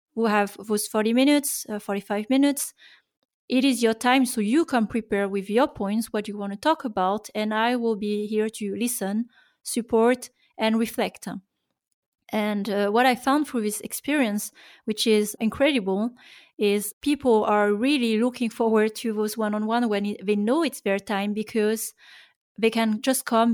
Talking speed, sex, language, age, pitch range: 170 wpm, female, English, 30-49, 210-250 Hz